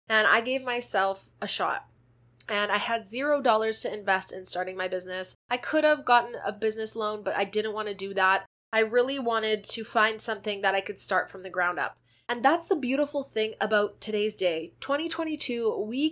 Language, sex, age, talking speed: English, female, 20-39, 200 wpm